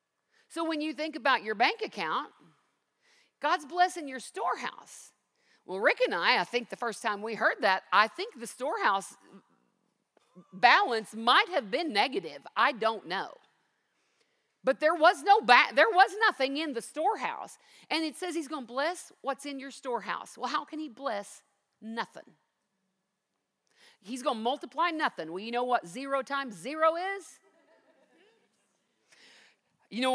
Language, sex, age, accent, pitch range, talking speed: English, female, 50-69, American, 250-365 Hz, 155 wpm